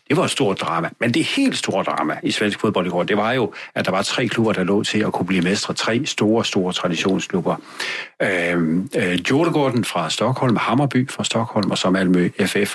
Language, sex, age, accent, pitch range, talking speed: Danish, male, 60-79, native, 95-125 Hz, 215 wpm